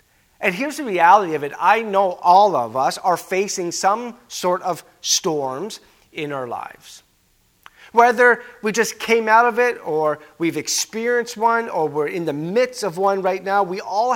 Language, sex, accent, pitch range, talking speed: English, male, American, 155-215 Hz, 180 wpm